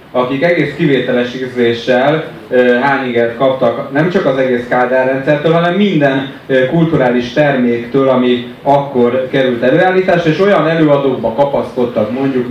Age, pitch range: 30-49, 125-145 Hz